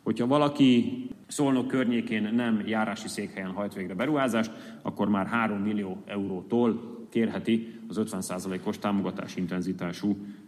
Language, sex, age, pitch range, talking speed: Hungarian, male, 30-49, 100-130 Hz, 115 wpm